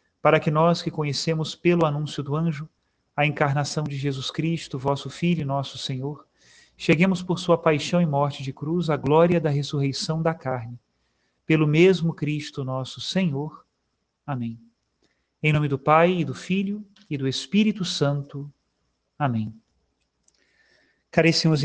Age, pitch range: 40-59, 145-175 Hz